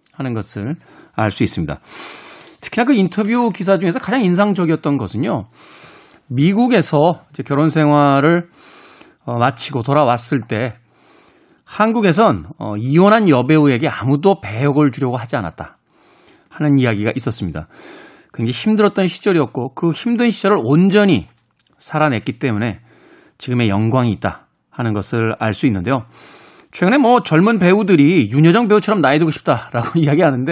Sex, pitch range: male, 125-195 Hz